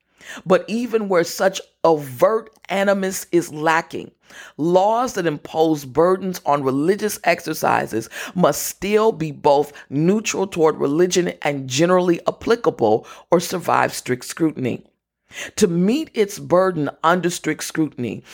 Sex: female